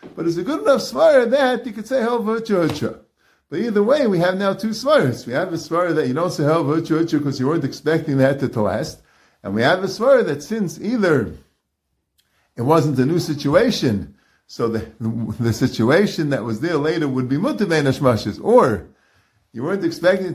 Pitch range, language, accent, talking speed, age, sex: 130-185 Hz, English, American, 200 wpm, 50-69, male